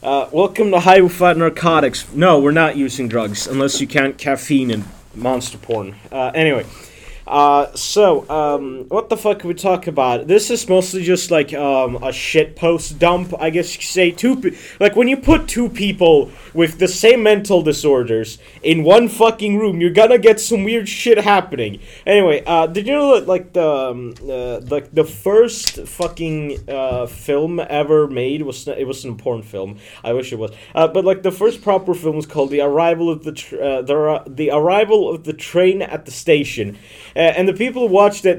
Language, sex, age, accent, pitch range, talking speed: English, male, 30-49, American, 145-205 Hz, 205 wpm